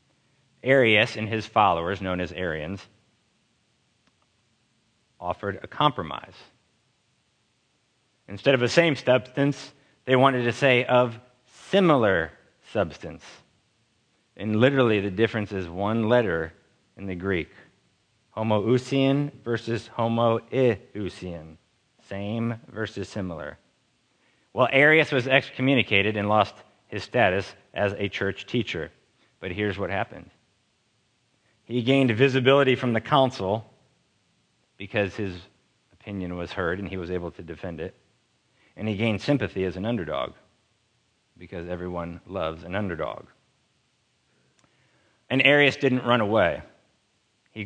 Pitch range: 100-130 Hz